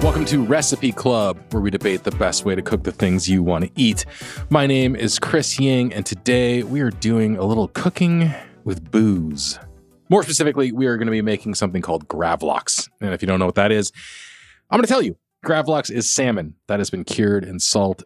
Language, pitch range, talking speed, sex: English, 90-130 Hz, 220 wpm, male